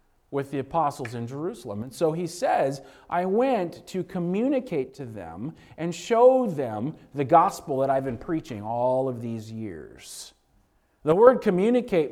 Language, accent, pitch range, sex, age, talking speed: English, American, 165-235 Hz, male, 40-59, 155 wpm